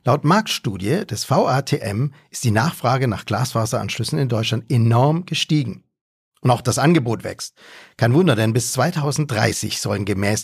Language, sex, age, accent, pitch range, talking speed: German, male, 50-69, German, 105-145 Hz, 145 wpm